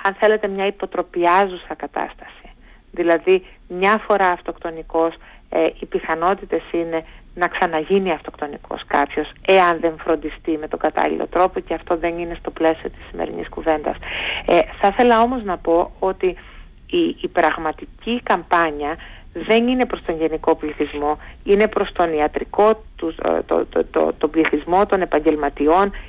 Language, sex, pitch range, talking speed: Greek, female, 165-205 Hz, 135 wpm